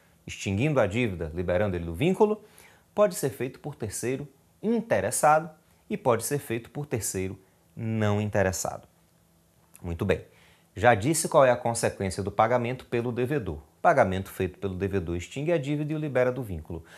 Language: Portuguese